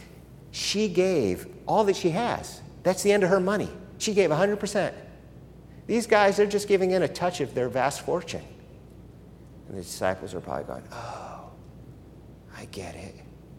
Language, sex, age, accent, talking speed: English, male, 50-69, American, 165 wpm